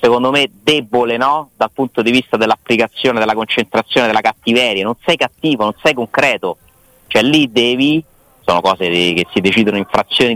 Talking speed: 170 wpm